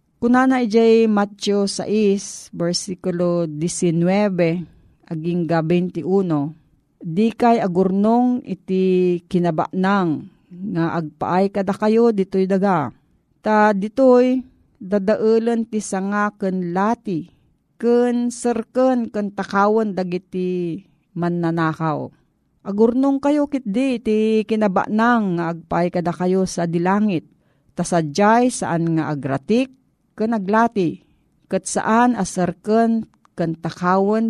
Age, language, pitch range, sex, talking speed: 40-59, Filipino, 170-215 Hz, female, 100 wpm